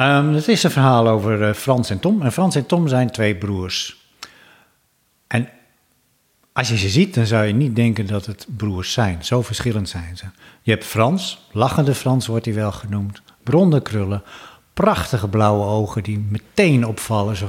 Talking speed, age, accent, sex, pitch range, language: 180 wpm, 60-79, Dutch, male, 105-130 Hz, Dutch